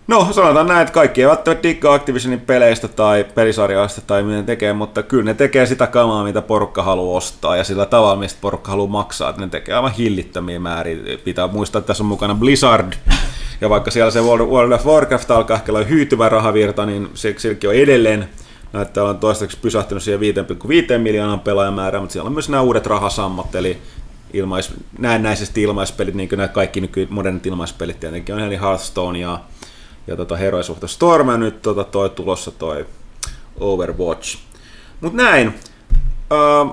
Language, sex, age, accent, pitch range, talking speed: Finnish, male, 30-49, native, 95-125 Hz, 175 wpm